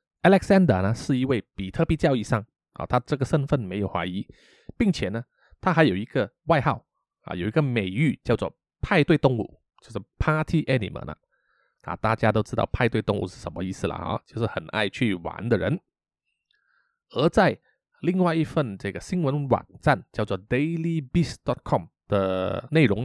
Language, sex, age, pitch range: Chinese, male, 20-39, 110-170 Hz